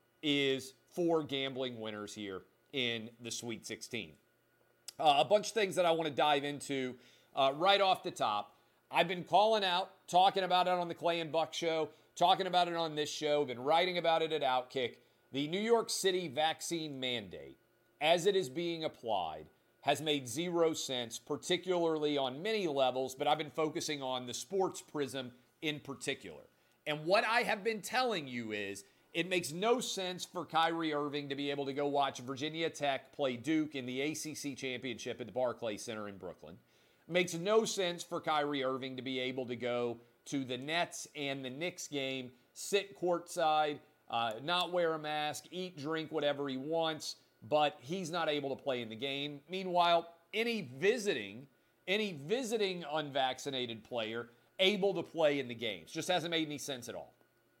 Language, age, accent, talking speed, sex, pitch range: English, 40-59, American, 180 wpm, male, 130-175 Hz